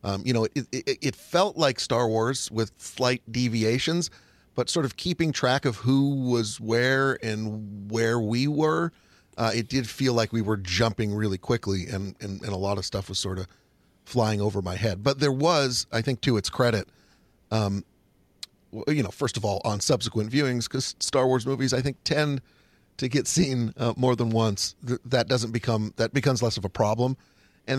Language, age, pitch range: English, 40-59, 110-135 Hz